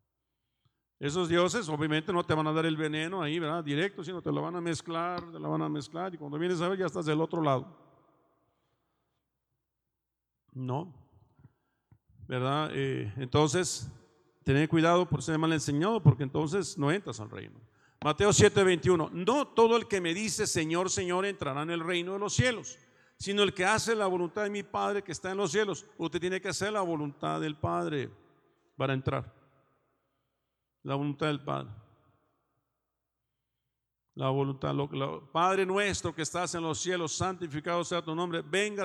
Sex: male